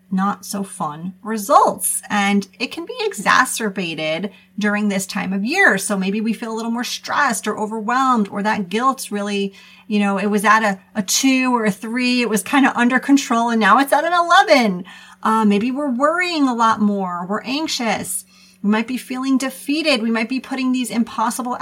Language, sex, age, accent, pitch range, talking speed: English, female, 30-49, American, 200-245 Hz, 195 wpm